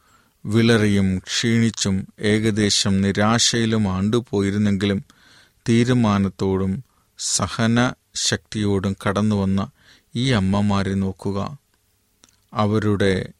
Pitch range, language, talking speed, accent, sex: 100-115 Hz, Malayalam, 55 wpm, native, male